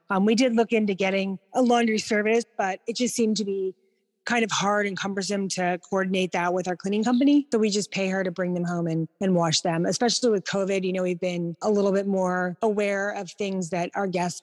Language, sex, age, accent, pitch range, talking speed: English, female, 30-49, American, 175-210 Hz, 235 wpm